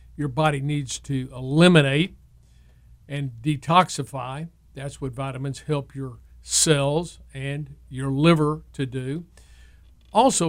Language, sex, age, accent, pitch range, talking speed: English, male, 50-69, American, 140-175 Hz, 110 wpm